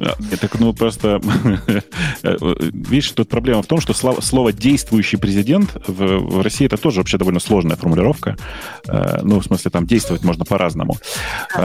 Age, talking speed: 30-49, 140 wpm